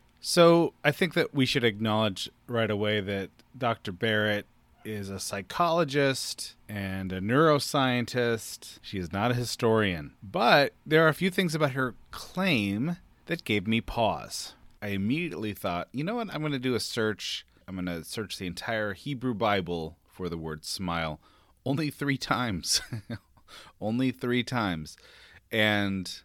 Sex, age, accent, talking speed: male, 30-49, American, 155 wpm